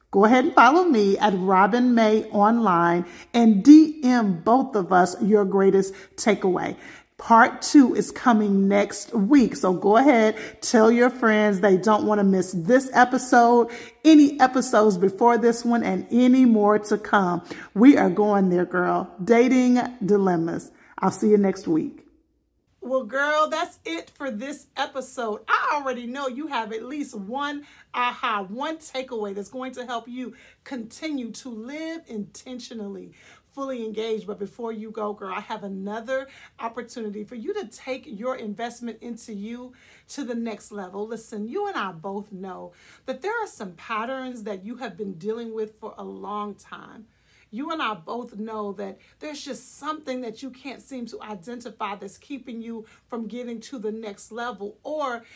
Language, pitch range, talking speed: English, 210-255 Hz, 165 wpm